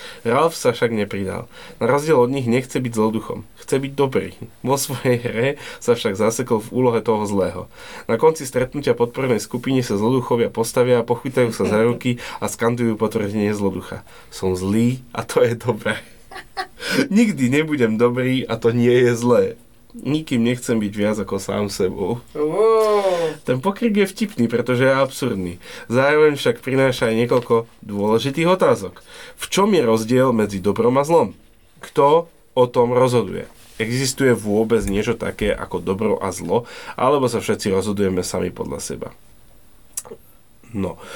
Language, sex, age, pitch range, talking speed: Slovak, male, 20-39, 110-135 Hz, 150 wpm